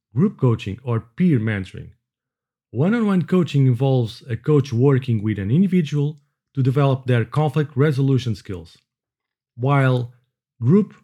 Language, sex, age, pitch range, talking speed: English, male, 40-59, 120-160 Hz, 130 wpm